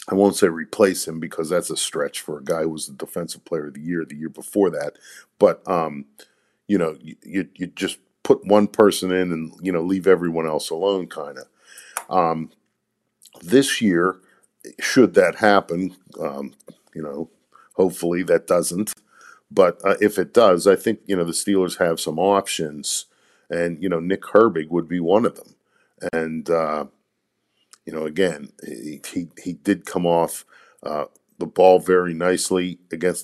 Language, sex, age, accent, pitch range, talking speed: English, male, 50-69, American, 85-95 Hz, 175 wpm